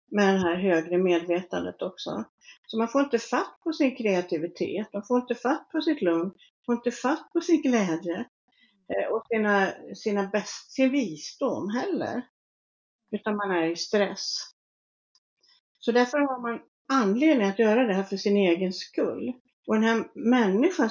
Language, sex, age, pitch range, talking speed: Swedish, female, 60-79, 190-240 Hz, 165 wpm